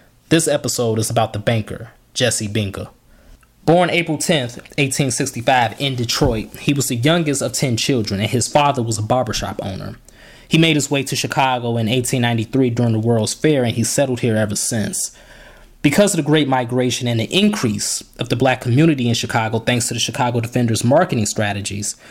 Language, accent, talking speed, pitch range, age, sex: English, American, 180 wpm, 115-145 Hz, 20-39, male